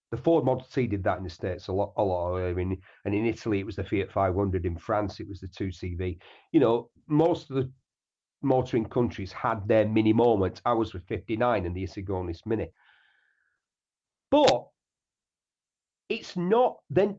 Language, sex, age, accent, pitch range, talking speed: English, male, 40-59, British, 100-160 Hz, 180 wpm